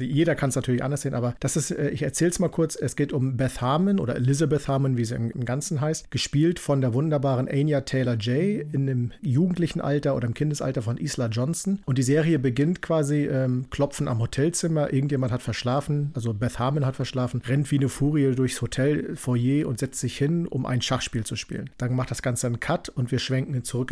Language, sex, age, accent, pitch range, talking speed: German, male, 50-69, German, 125-145 Hz, 220 wpm